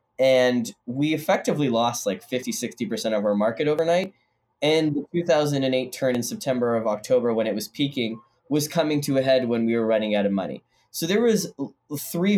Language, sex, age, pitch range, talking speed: English, male, 10-29, 110-145 Hz, 190 wpm